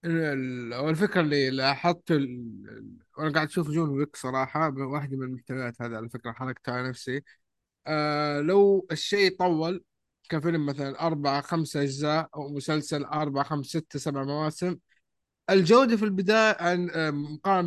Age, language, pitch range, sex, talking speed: 20-39, Arabic, 140-180 Hz, male, 130 wpm